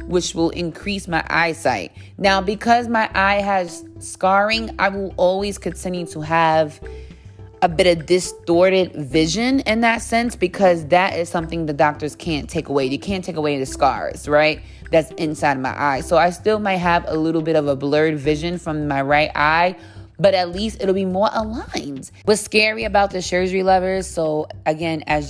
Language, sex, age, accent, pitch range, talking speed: English, female, 20-39, American, 145-185 Hz, 185 wpm